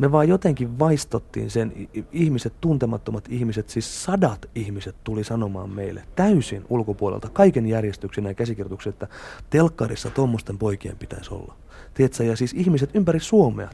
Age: 30-49